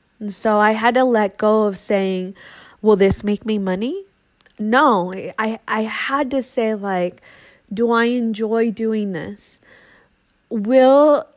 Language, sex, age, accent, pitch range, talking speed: English, female, 20-39, American, 190-230 Hz, 140 wpm